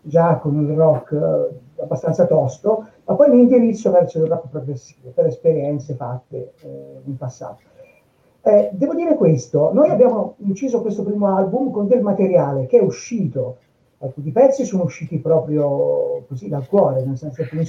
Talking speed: 160 wpm